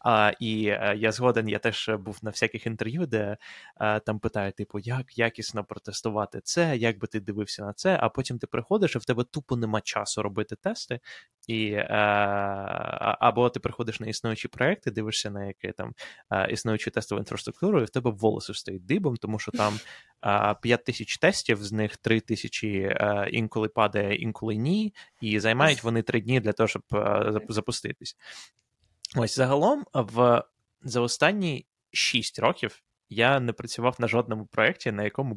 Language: Ukrainian